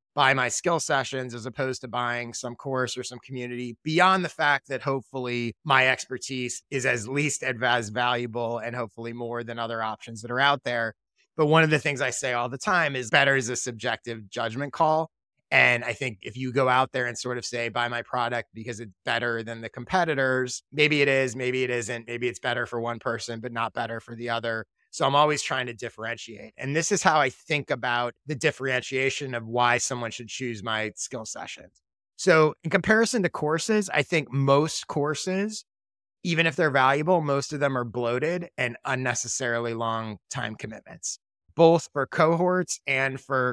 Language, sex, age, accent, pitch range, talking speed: English, male, 30-49, American, 120-150 Hz, 195 wpm